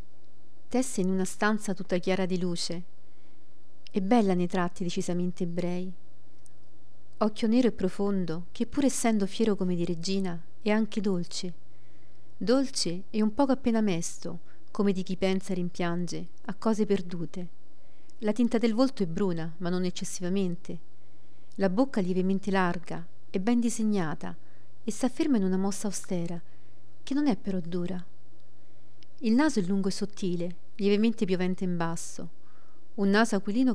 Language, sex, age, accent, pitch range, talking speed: Italian, female, 40-59, native, 175-210 Hz, 150 wpm